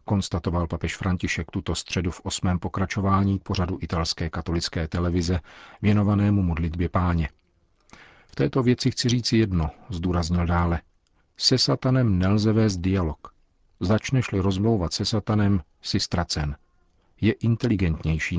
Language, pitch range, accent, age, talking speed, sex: Czech, 85-105 Hz, native, 50-69, 120 wpm, male